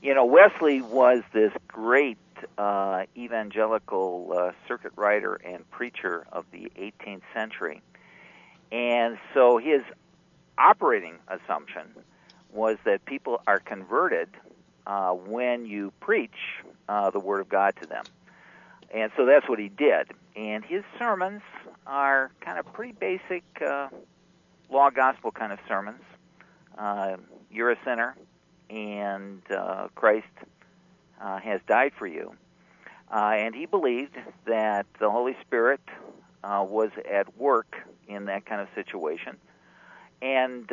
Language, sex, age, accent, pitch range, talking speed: English, male, 50-69, American, 100-140 Hz, 130 wpm